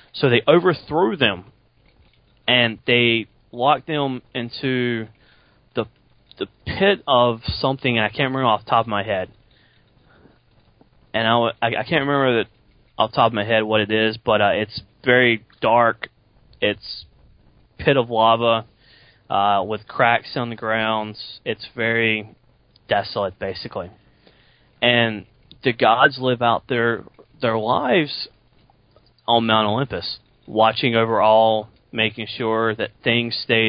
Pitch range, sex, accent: 105-120 Hz, male, American